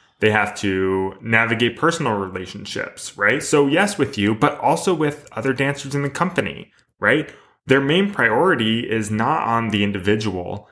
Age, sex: 20-39, male